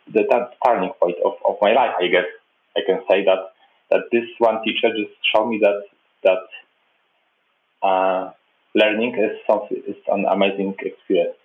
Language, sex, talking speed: English, male, 160 wpm